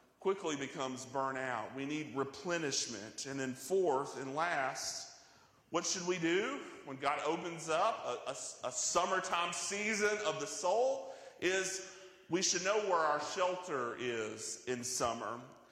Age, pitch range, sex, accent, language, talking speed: 40-59, 130-175 Hz, male, American, English, 140 wpm